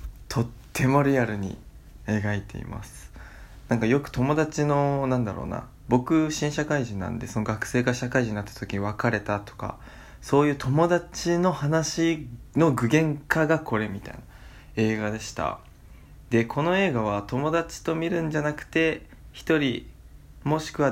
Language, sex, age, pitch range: Japanese, male, 20-39, 105-140 Hz